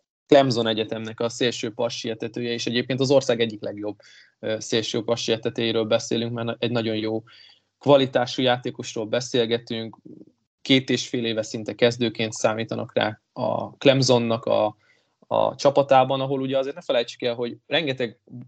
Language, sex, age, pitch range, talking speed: Hungarian, male, 20-39, 110-130 Hz, 135 wpm